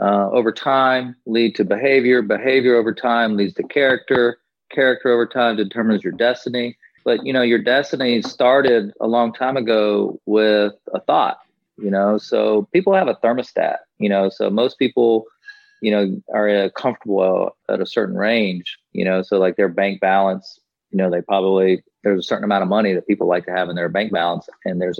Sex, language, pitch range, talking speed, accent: male, English, 95-115 Hz, 190 wpm, American